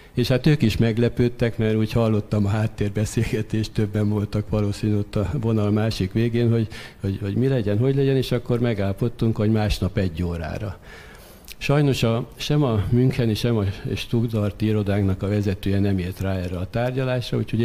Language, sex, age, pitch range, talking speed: Hungarian, male, 60-79, 95-110 Hz, 175 wpm